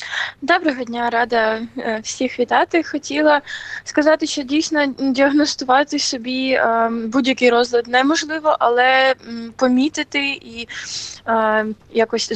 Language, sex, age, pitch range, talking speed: Ukrainian, female, 20-39, 230-280 Hz, 85 wpm